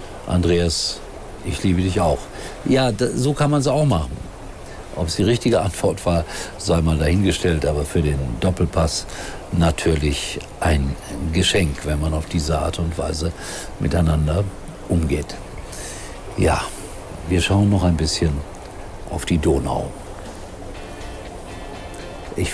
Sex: male